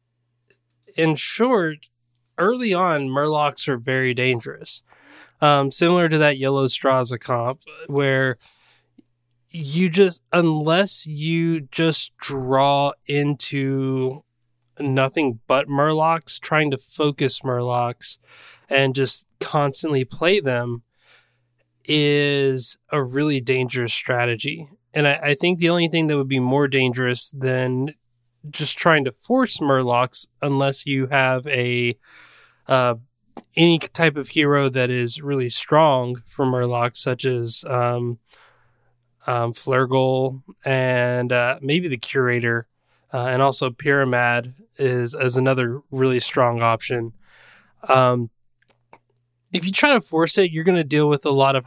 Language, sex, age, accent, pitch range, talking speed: English, male, 20-39, American, 125-150 Hz, 125 wpm